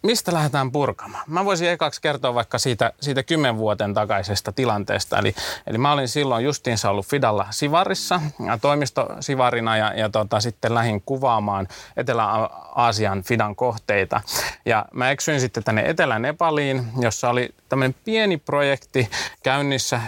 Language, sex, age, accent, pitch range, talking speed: Finnish, male, 30-49, native, 110-140 Hz, 135 wpm